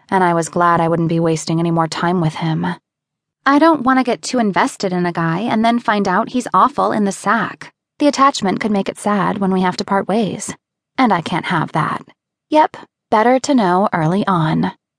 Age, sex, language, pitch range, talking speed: 20-39, female, English, 180-230 Hz, 220 wpm